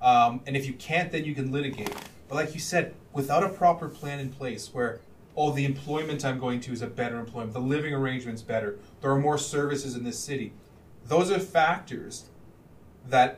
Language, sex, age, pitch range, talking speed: English, male, 30-49, 135-185 Hz, 200 wpm